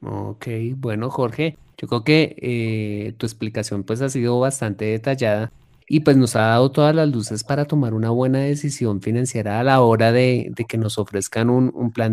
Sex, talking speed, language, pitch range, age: male, 195 wpm, Spanish, 110-135 Hz, 30-49